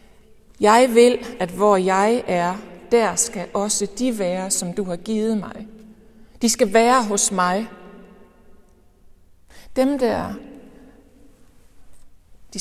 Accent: native